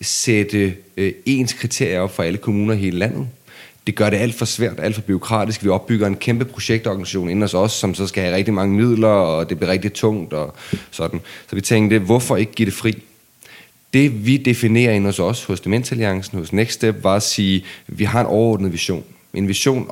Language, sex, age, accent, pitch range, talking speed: Danish, male, 30-49, native, 95-115 Hz, 215 wpm